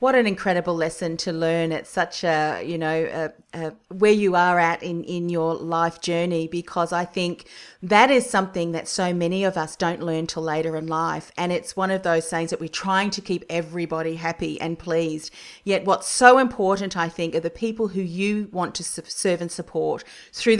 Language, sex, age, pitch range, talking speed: English, female, 40-59, 170-215 Hz, 200 wpm